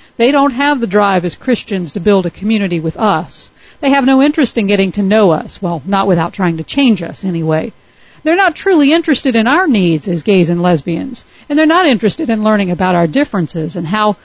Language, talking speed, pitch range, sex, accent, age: English, 220 wpm, 185-255 Hz, female, American, 50-69